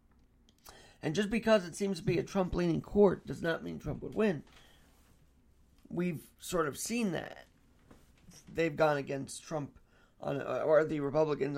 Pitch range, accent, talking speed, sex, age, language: 140-205 Hz, American, 150 wpm, male, 50-69, English